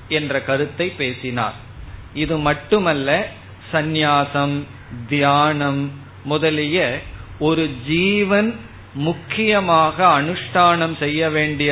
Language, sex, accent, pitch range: Tamil, male, native, 130-160 Hz